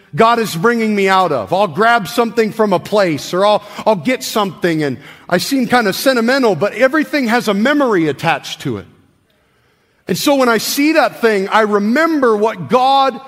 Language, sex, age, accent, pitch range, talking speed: English, male, 40-59, American, 195-245 Hz, 190 wpm